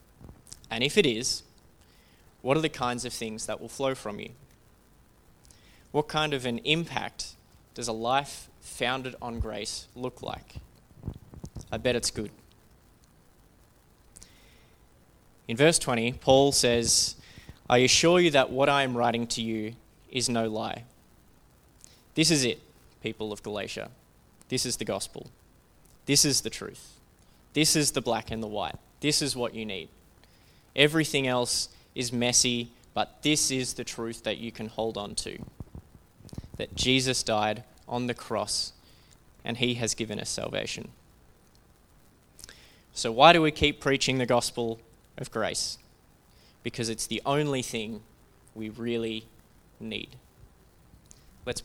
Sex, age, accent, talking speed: male, 20-39, Australian, 140 wpm